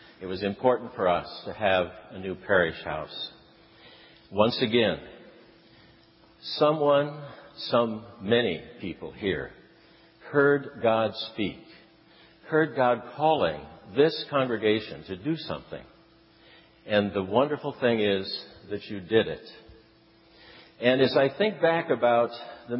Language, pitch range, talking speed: English, 105-145 Hz, 120 wpm